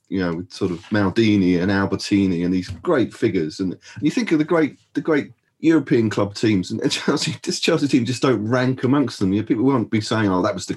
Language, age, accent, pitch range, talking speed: English, 30-49, British, 95-115 Hz, 240 wpm